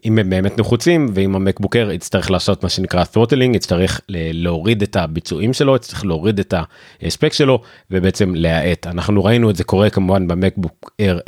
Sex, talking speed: male, 160 wpm